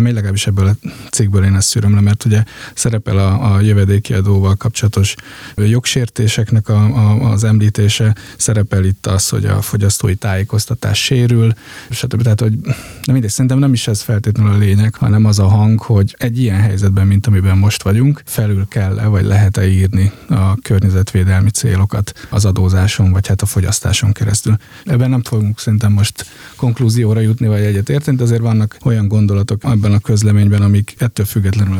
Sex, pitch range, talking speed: male, 100-115 Hz, 170 wpm